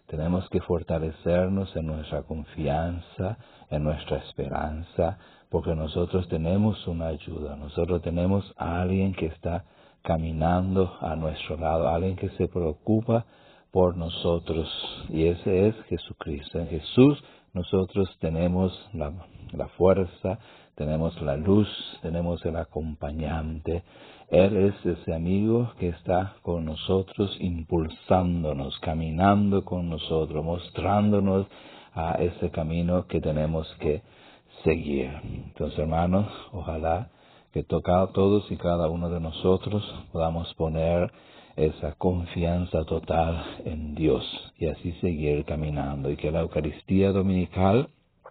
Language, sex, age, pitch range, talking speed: English, male, 50-69, 80-95 Hz, 115 wpm